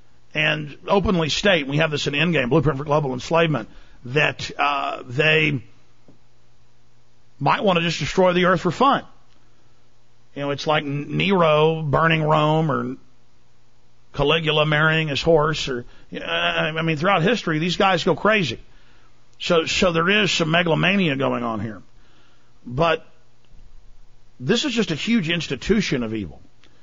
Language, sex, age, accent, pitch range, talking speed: English, male, 50-69, American, 130-175 Hz, 150 wpm